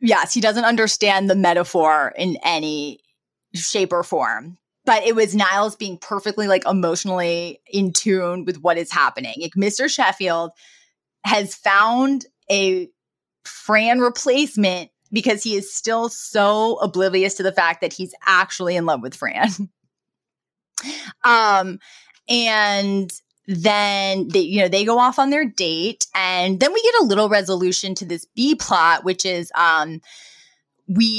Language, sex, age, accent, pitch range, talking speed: English, female, 20-39, American, 175-220 Hz, 145 wpm